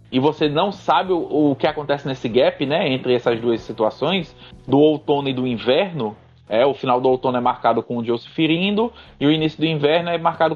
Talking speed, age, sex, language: 215 wpm, 20-39, male, Portuguese